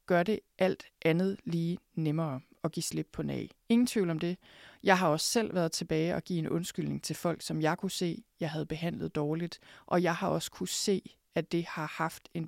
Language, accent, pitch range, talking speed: Danish, native, 160-200 Hz, 220 wpm